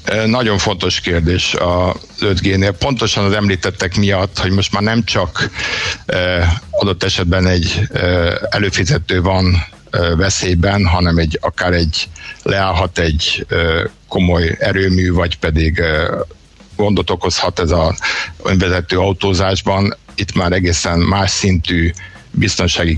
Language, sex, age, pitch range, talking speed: Hungarian, male, 60-79, 90-105 Hz, 125 wpm